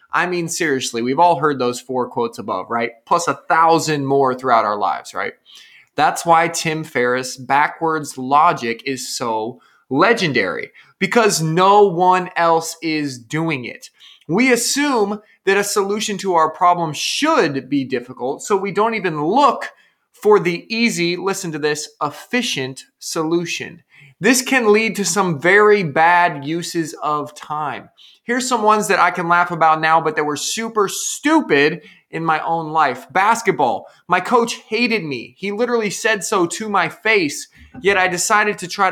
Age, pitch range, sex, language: 20-39, 155-205 Hz, male, English